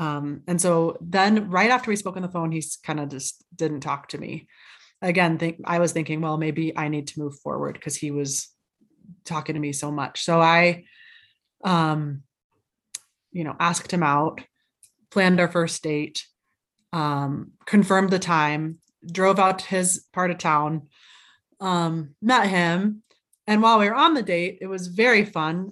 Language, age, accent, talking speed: English, 30-49, American, 175 wpm